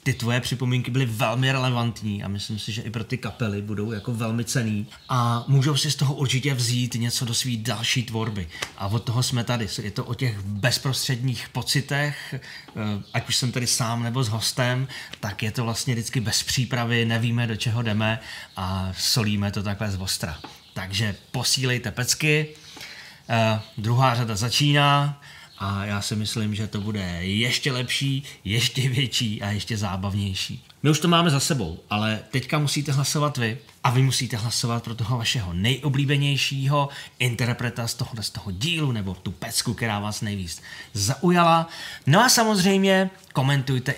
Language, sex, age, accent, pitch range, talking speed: Czech, male, 30-49, native, 110-135 Hz, 165 wpm